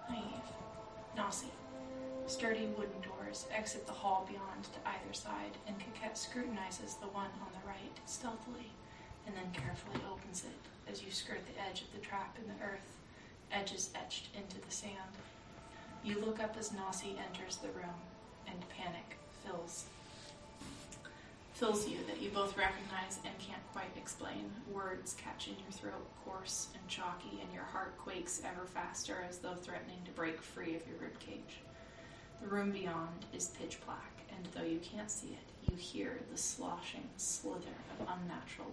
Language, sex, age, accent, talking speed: English, female, 20-39, American, 165 wpm